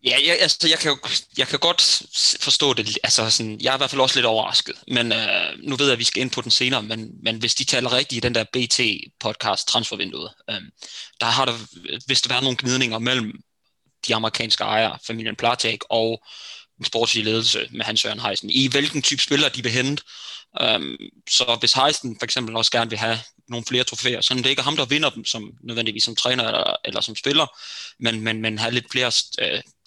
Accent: native